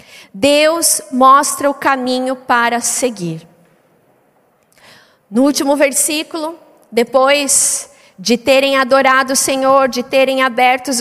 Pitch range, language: 245-295 Hz, Portuguese